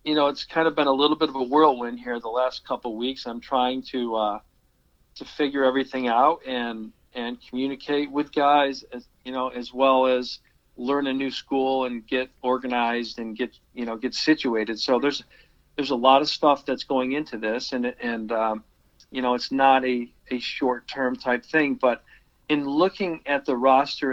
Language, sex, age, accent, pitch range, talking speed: English, male, 50-69, American, 120-135 Hz, 195 wpm